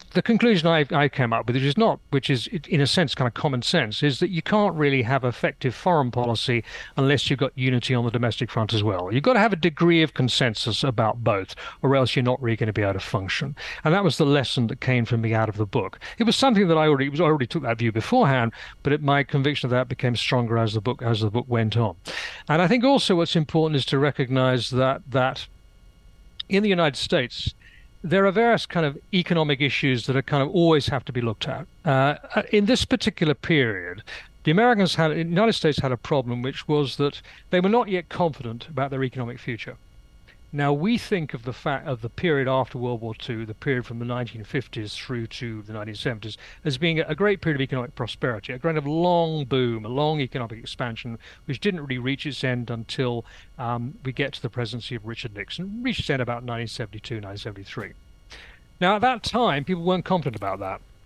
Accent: British